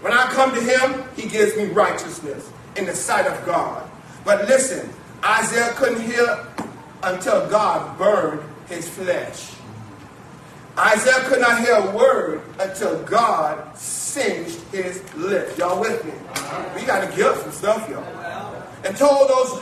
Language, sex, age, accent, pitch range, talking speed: English, male, 40-59, American, 215-285 Hz, 145 wpm